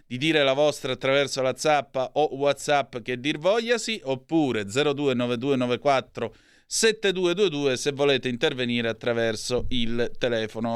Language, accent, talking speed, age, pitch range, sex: Italian, native, 125 wpm, 30-49, 120-150 Hz, male